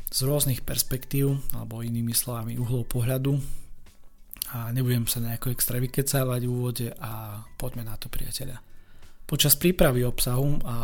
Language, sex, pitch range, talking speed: Slovak, male, 115-135 Hz, 140 wpm